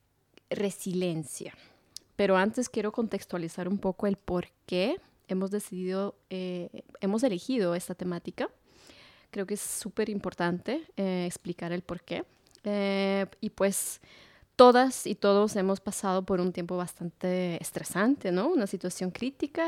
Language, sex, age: English, female, 20-39